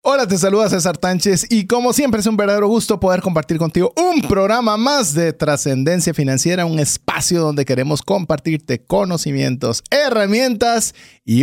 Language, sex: Spanish, male